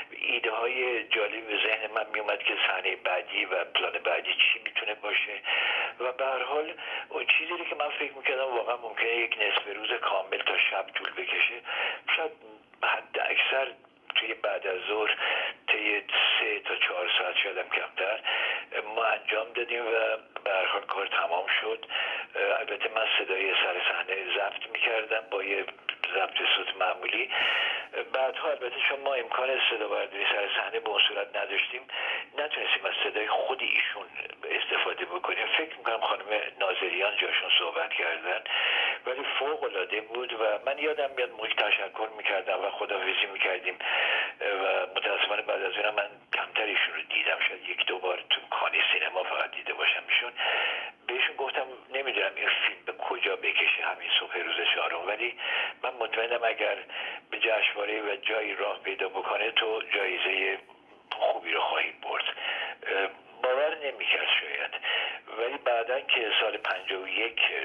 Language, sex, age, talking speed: Persian, male, 60-79, 140 wpm